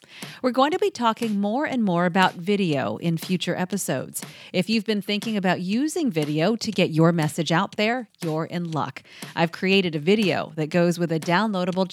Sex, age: female, 40-59